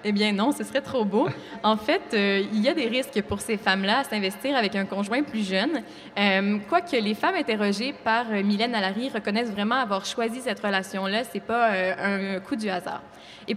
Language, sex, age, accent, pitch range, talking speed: French, female, 20-39, Canadian, 195-245 Hz, 215 wpm